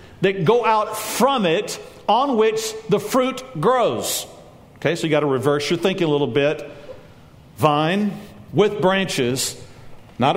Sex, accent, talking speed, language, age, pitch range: male, American, 145 wpm, English, 50-69, 145-210 Hz